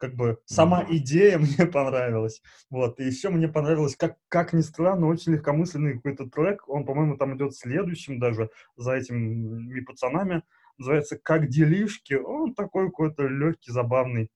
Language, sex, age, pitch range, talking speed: Russian, male, 20-39, 125-160 Hz, 150 wpm